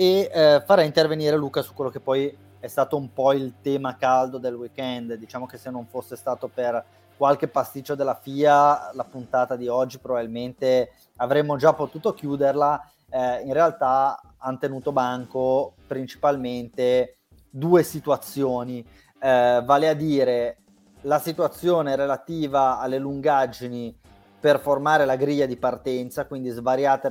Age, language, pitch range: 20-39, Italian, 125-145 Hz